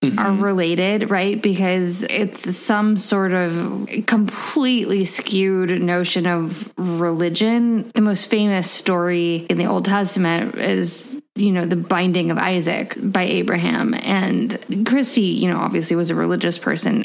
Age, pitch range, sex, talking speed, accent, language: 20-39, 180-225 Hz, female, 135 wpm, American, English